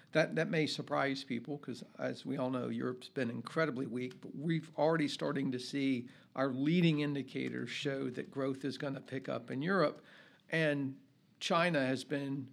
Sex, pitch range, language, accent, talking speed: male, 135-160 Hz, English, American, 175 wpm